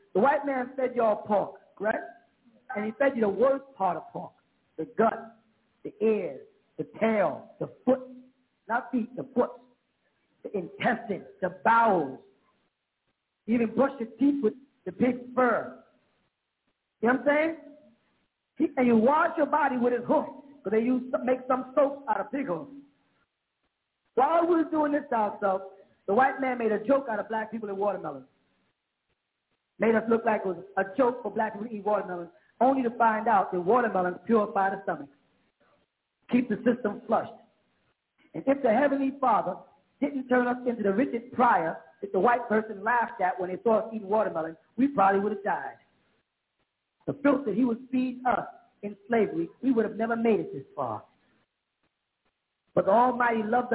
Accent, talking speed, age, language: American, 180 wpm, 40-59, English